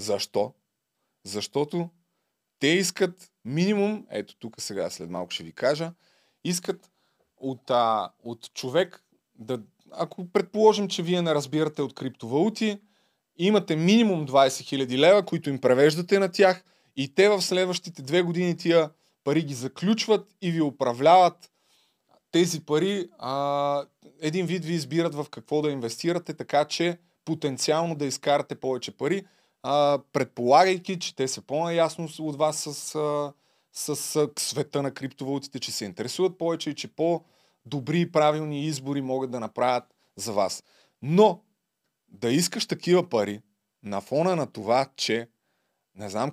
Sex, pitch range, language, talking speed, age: male, 130-175 Hz, Bulgarian, 140 wpm, 30-49